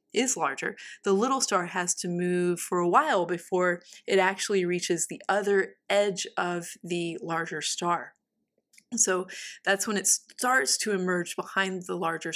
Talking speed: 155 wpm